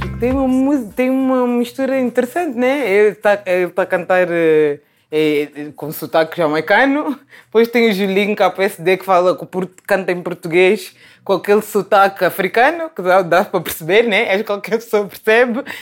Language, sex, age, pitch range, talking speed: Portuguese, female, 20-39, 185-240 Hz, 170 wpm